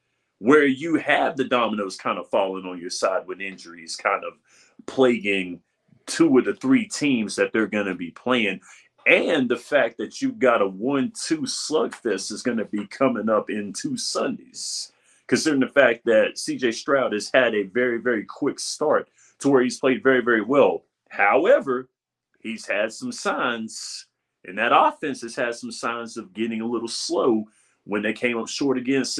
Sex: male